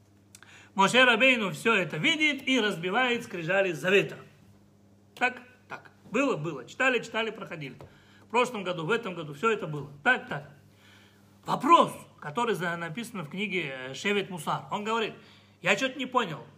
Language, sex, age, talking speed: Russian, male, 40-59, 145 wpm